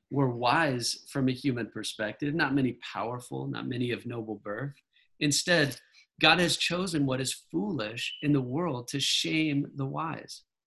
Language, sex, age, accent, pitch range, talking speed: English, male, 40-59, American, 110-145 Hz, 155 wpm